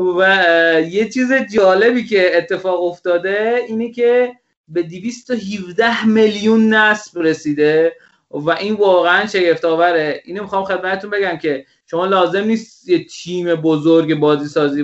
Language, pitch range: Persian, 150-195 Hz